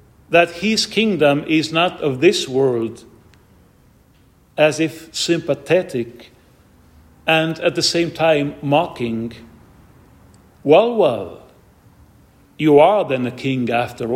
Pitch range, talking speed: 120-180 Hz, 105 wpm